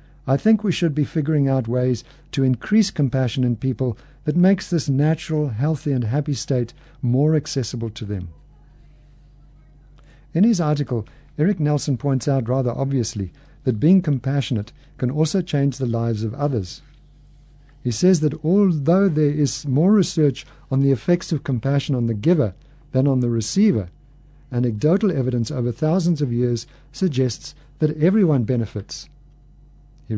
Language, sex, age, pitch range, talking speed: English, male, 50-69, 125-150 Hz, 150 wpm